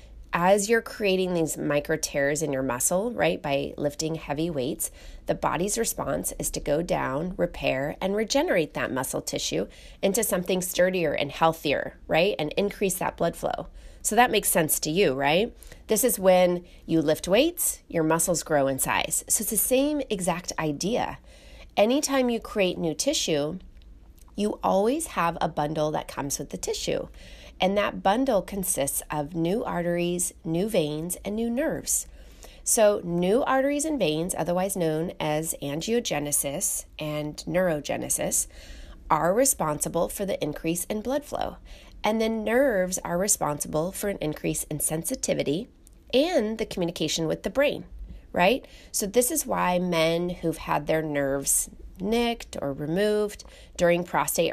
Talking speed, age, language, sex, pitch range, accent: 155 wpm, 30-49, English, female, 155-220 Hz, American